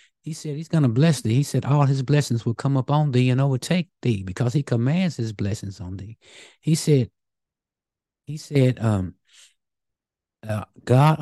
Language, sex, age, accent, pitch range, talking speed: English, male, 60-79, American, 110-145 Hz, 175 wpm